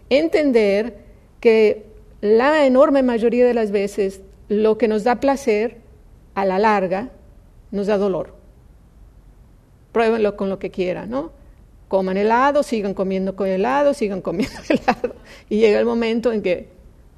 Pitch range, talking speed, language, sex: 200-260 Hz, 140 wpm, English, female